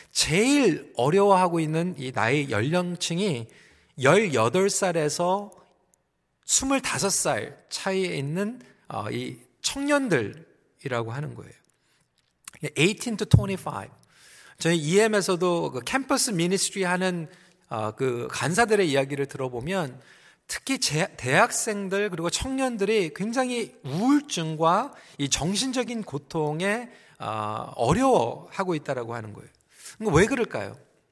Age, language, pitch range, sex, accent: 40-59, Korean, 150-210 Hz, male, native